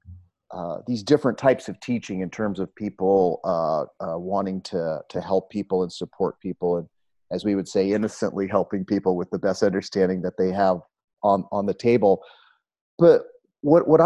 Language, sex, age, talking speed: English, male, 40-59, 180 wpm